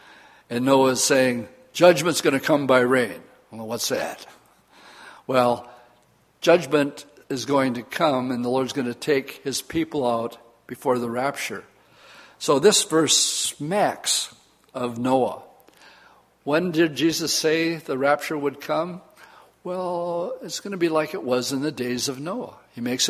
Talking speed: 155 wpm